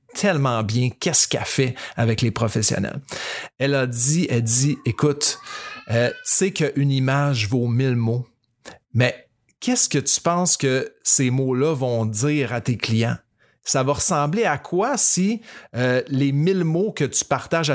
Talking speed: 160 wpm